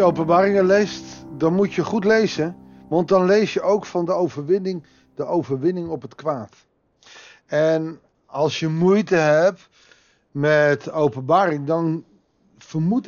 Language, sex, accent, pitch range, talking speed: Dutch, male, Dutch, 145-185 Hz, 135 wpm